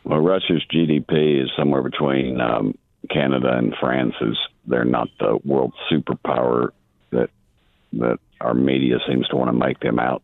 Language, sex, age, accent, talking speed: English, male, 60-79, American, 150 wpm